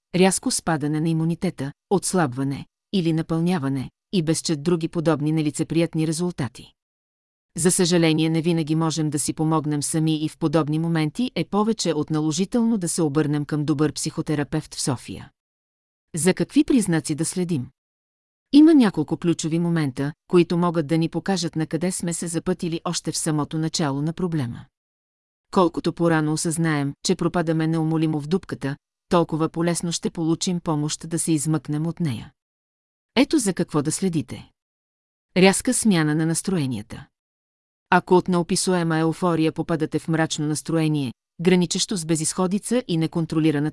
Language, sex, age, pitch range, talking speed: Bulgarian, female, 40-59, 150-180 Hz, 140 wpm